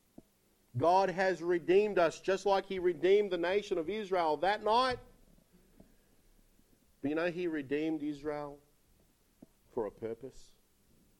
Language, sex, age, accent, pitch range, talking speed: English, male, 50-69, Australian, 145-230 Hz, 125 wpm